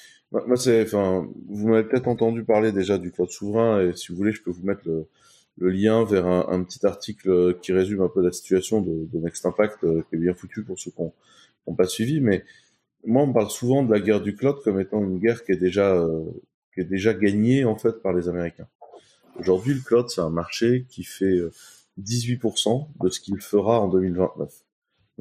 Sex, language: male, French